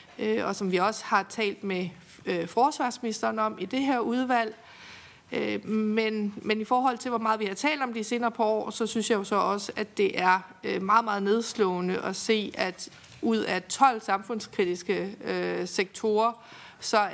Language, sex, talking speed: Danish, female, 175 wpm